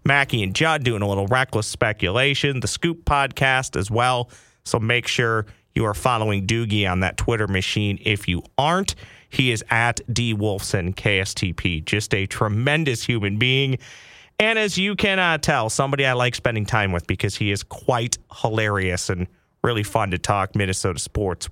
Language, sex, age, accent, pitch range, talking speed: English, male, 30-49, American, 105-145 Hz, 170 wpm